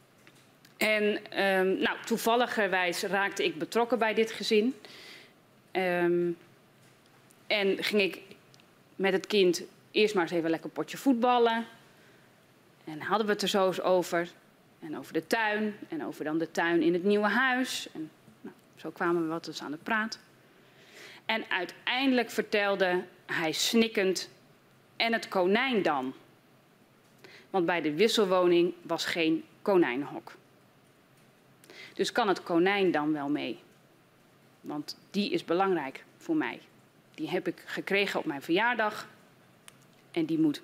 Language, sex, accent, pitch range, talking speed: Dutch, female, Dutch, 175-225 Hz, 140 wpm